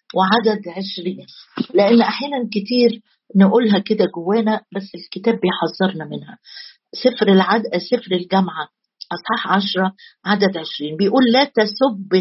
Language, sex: Arabic, female